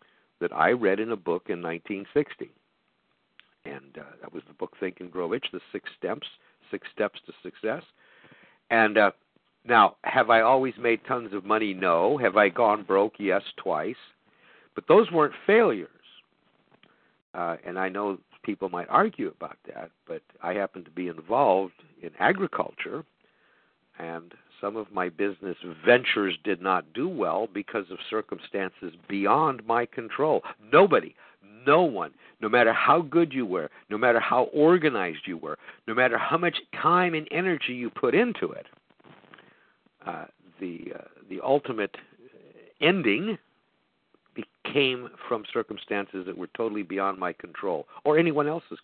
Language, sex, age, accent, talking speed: English, male, 60-79, American, 150 wpm